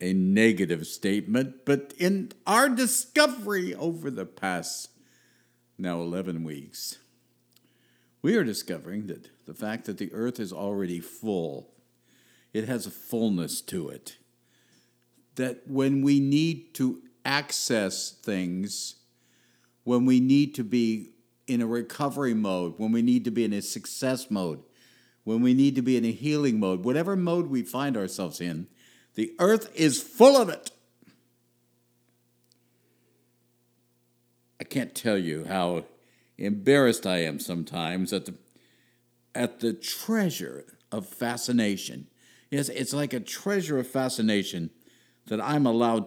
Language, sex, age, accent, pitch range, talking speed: English, male, 60-79, American, 95-130 Hz, 135 wpm